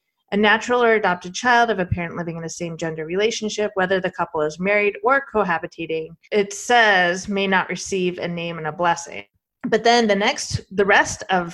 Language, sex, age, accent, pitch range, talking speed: English, female, 30-49, American, 175-220 Hz, 190 wpm